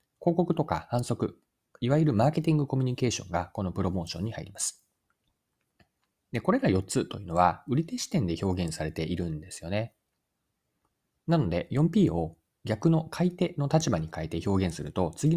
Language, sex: Japanese, male